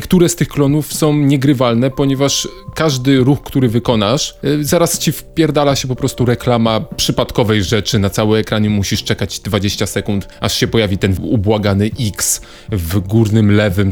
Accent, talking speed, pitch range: native, 155 wpm, 110-140 Hz